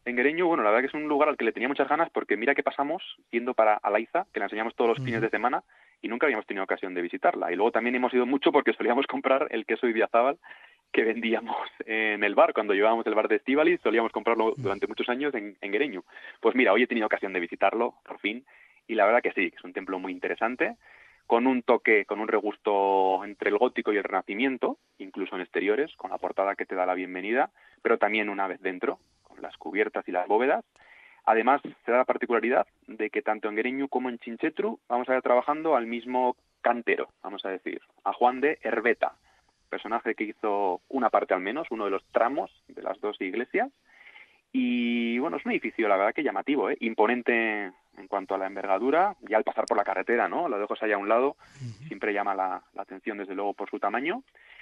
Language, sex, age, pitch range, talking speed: Spanish, male, 30-49, 100-130 Hz, 225 wpm